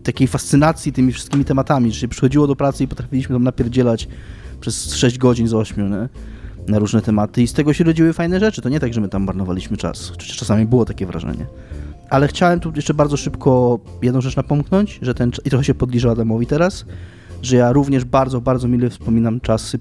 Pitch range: 110-140 Hz